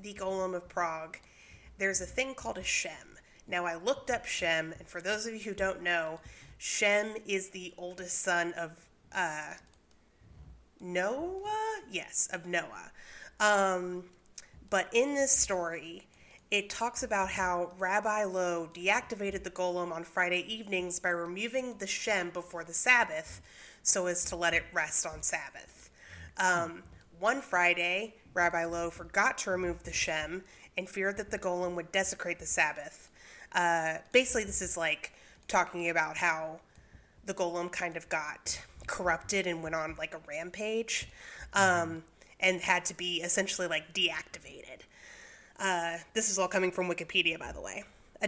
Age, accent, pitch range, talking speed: 30-49, American, 170-200 Hz, 155 wpm